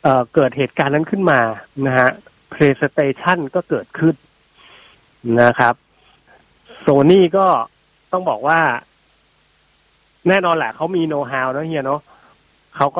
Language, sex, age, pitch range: Thai, male, 30-49, 130-175 Hz